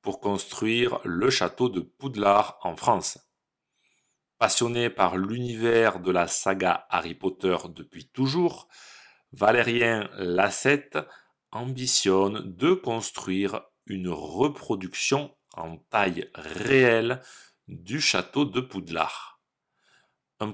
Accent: French